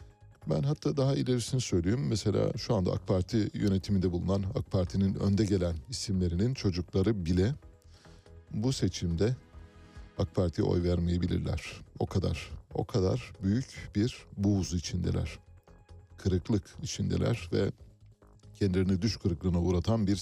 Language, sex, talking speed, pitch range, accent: Turkish, male, 125 wpm, 90-110 Hz, native